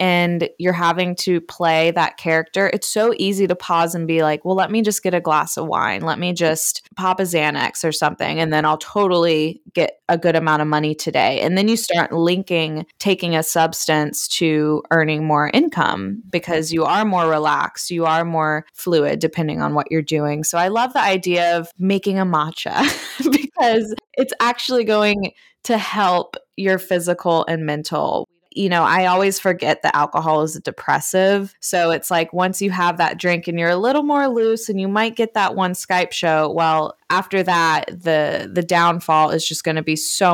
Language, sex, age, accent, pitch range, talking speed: English, female, 20-39, American, 160-195 Hz, 195 wpm